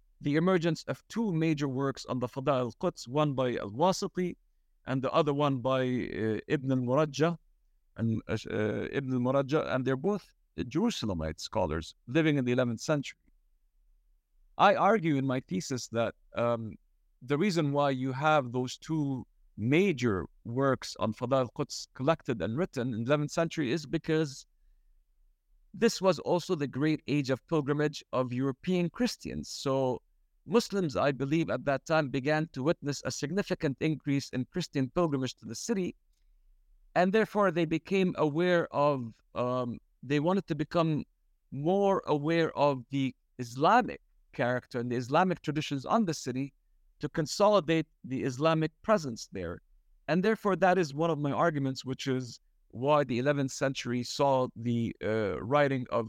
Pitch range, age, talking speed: 120-160 Hz, 50-69, 155 wpm